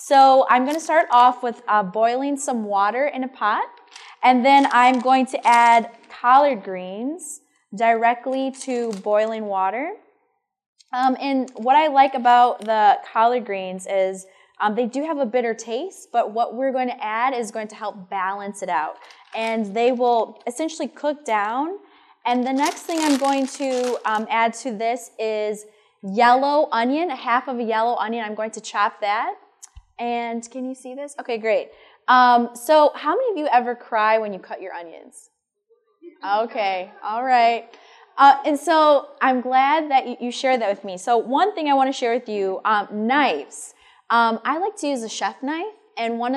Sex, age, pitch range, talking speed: female, 10-29, 220-280 Hz, 180 wpm